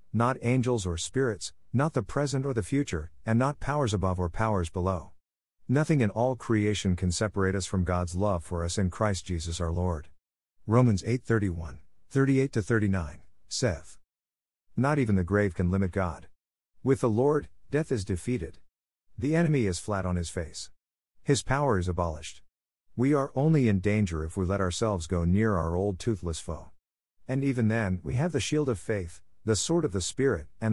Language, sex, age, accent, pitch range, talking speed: English, male, 50-69, American, 90-125 Hz, 180 wpm